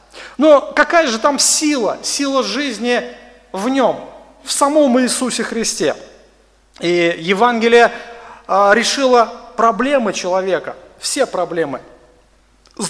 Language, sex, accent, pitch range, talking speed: Russian, male, native, 200-260 Hz, 100 wpm